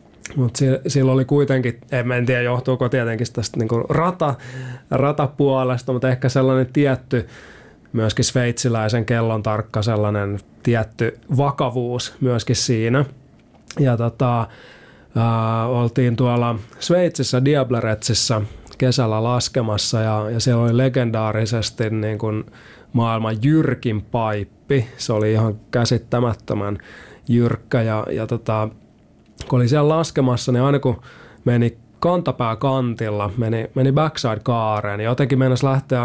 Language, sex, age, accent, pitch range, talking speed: Finnish, male, 30-49, native, 110-130 Hz, 120 wpm